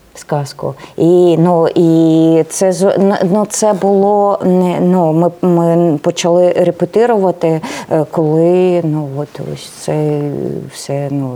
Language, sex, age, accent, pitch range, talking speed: Ukrainian, female, 20-39, native, 155-185 Hz, 105 wpm